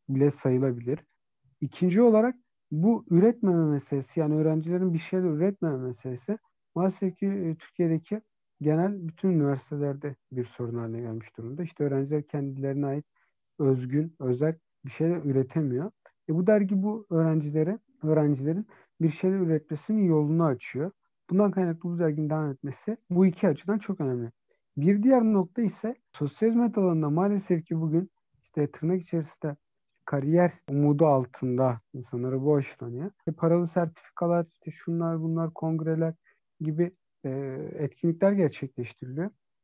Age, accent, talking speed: 50-69, native, 120 wpm